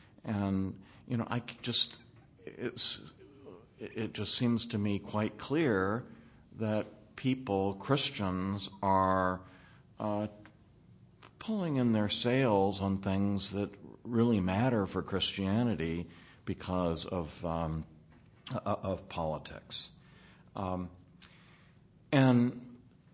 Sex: male